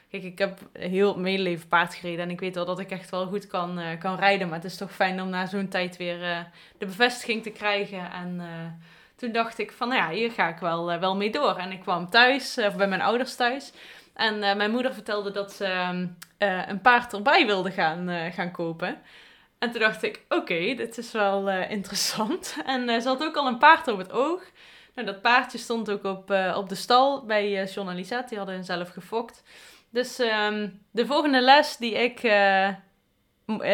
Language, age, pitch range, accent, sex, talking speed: Dutch, 20-39, 185-230 Hz, Dutch, female, 230 wpm